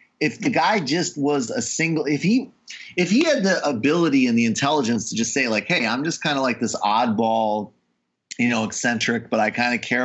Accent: American